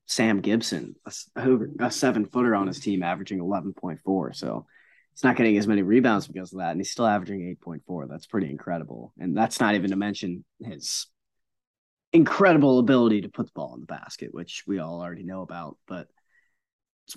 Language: English